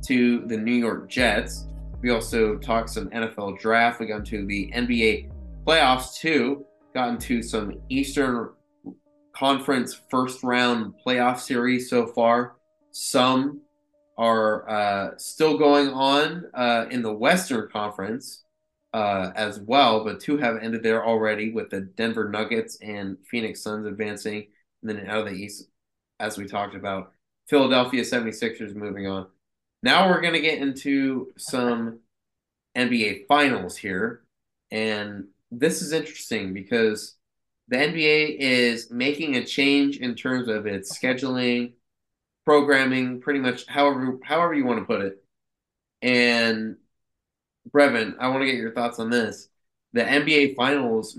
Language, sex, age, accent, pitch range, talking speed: English, male, 20-39, American, 110-140 Hz, 140 wpm